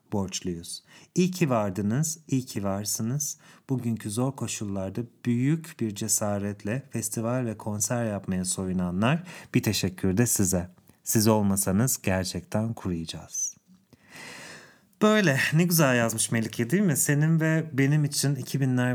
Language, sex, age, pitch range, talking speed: English, male, 40-59, 105-135 Hz, 120 wpm